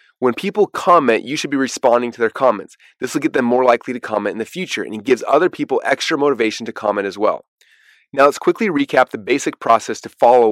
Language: English